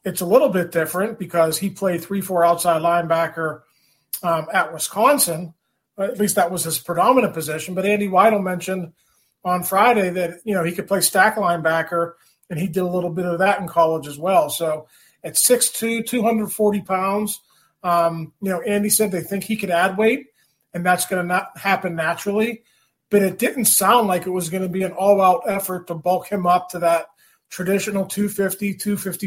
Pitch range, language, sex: 170-205 Hz, English, male